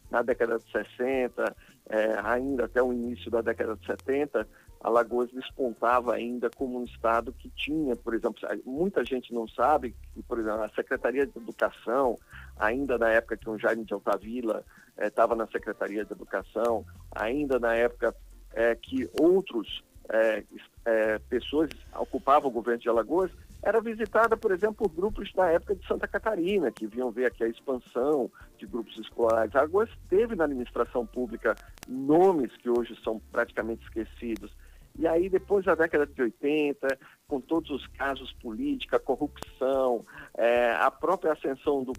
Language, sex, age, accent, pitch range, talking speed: Portuguese, male, 50-69, Brazilian, 115-160 Hz, 155 wpm